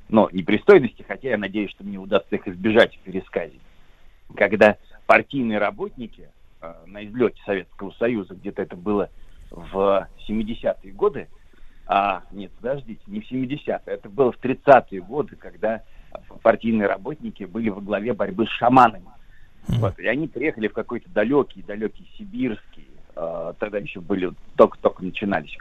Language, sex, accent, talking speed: Russian, male, native, 145 wpm